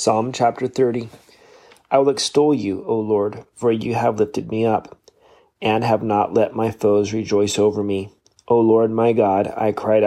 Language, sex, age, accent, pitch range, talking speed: English, male, 30-49, American, 105-115 Hz, 180 wpm